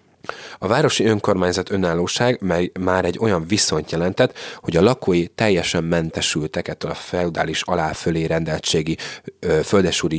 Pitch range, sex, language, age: 80-95 Hz, male, Hungarian, 30-49